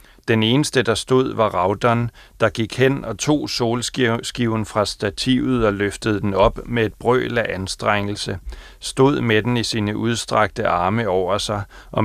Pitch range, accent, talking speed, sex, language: 100-120 Hz, native, 165 wpm, male, Danish